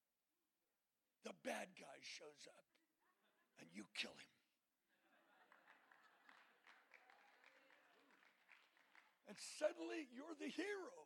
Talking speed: 75 wpm